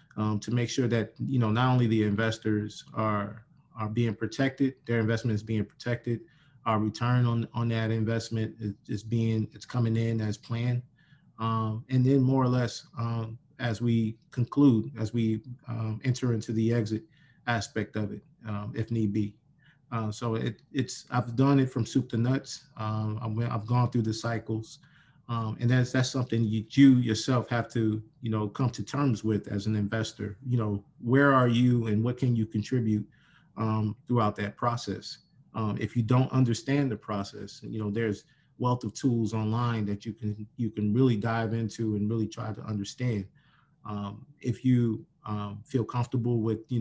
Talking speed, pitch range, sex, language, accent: 180 wpm, 110-125 Hz, male, English, American